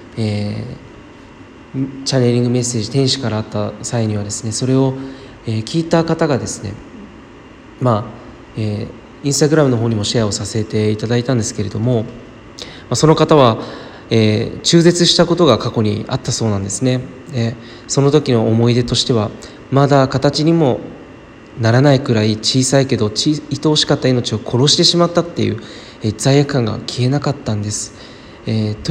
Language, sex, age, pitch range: Japanese, male, 20-39, 115-135 Hz